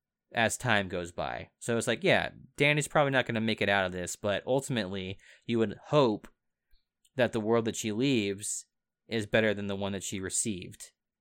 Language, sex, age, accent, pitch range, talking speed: English, male, 20-39, American, 100-120 Hz, 195 wpm